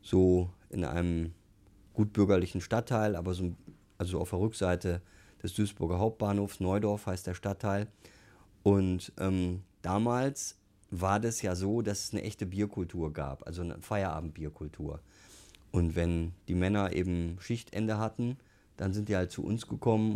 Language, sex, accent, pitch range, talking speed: German, male, German, 90-105 Hz, 140 wpm